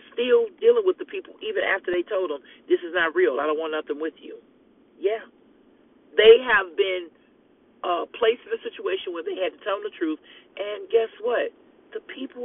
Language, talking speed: English, 200 wpm